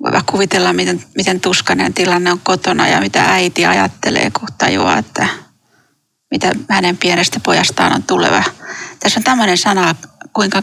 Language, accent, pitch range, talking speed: Finnish, native, 180-215 Hz, 145 wpm